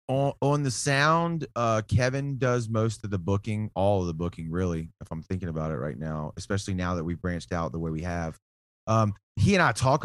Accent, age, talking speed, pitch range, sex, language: American, 30-49, 225 wpm, 100-125 Hz, male, English